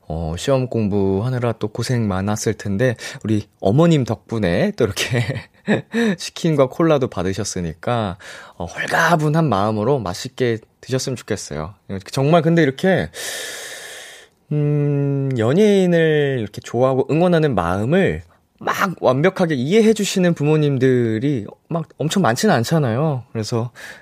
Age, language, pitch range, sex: 20-39, Korean, 105-155 Hz, male